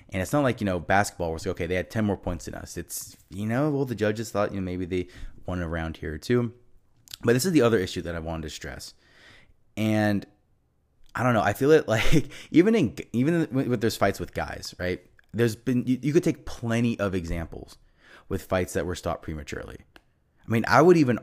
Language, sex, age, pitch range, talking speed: English, male, 20-39, 90-115 Hz, 225 wpm